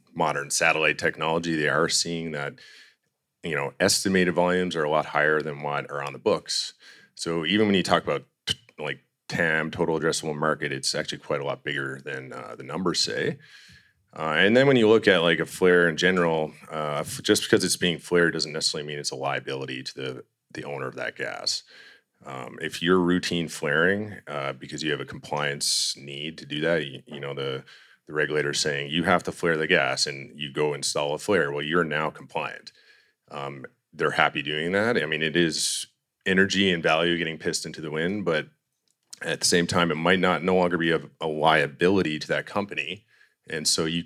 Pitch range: 75-90 Hz